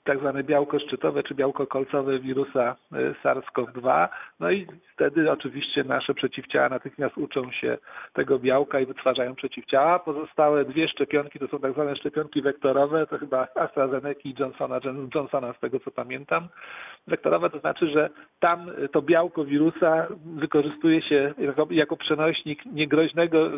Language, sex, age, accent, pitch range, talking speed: Polish, male, 40-59, native, 135-160 Hz, 145 wpm